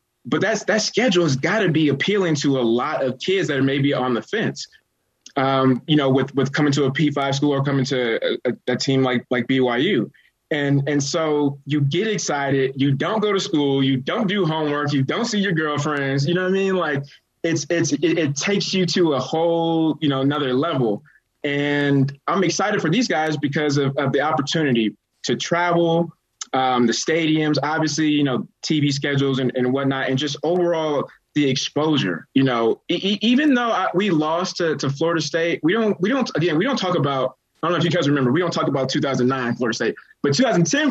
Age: 20-39